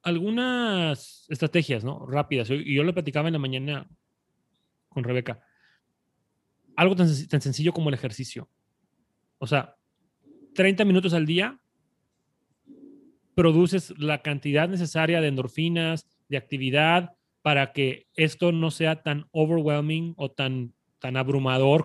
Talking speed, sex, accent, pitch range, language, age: 120 wpm, male, Mexican, 135-165 Hz, Spanish, 30-49